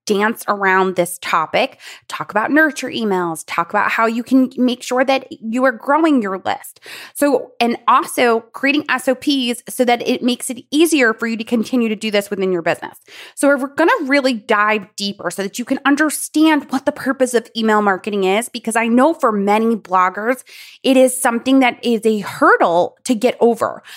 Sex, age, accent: female, 20-39, American